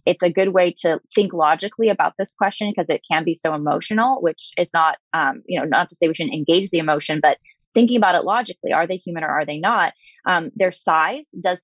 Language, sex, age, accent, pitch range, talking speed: English, female, 20-39, American, 165-200 Hz, 235 wpm